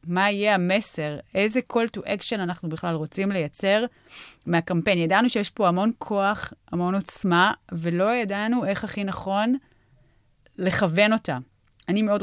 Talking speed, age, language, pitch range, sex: 135 wpm, 30-49, Hebrew, 165-205 Hz, female